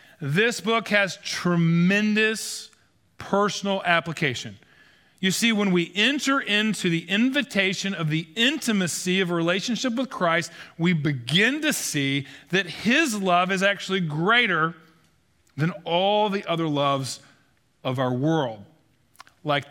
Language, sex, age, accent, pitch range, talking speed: English, male, 40-59, American, 130-180 Hz, 125 wpm